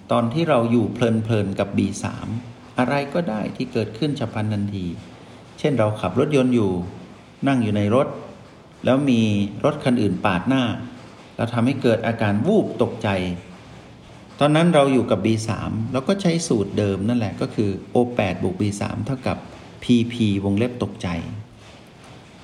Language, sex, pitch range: Thai, male, 105-125 Hz